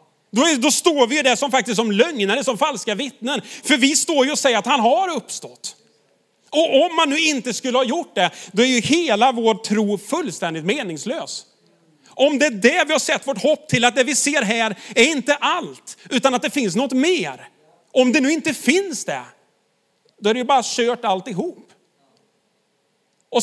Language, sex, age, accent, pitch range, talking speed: Swedish, male, 30-49, native, 215-275 Hz, 200 wpm